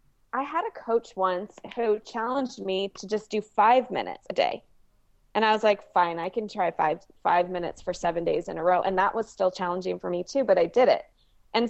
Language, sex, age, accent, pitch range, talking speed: English, female, 20-39, American, 190-255 Hz, 230 wpm